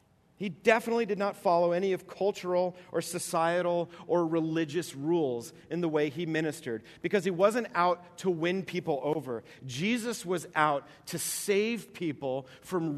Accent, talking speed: American, 155 wpm